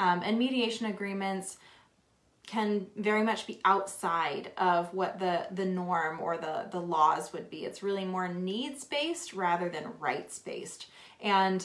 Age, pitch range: 20-39, 170-200 Hz